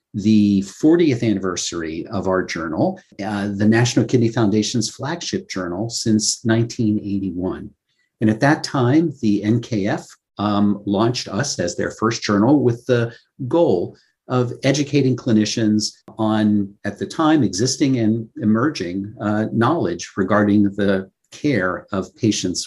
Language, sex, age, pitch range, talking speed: English, male, 50-69, 105-125 Hz, 125 wpm